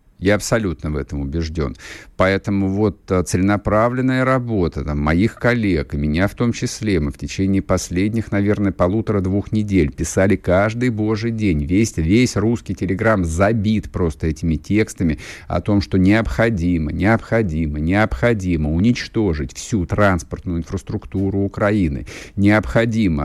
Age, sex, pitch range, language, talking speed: 50-69, male, 85-110 Hz, Russian, 120 wpm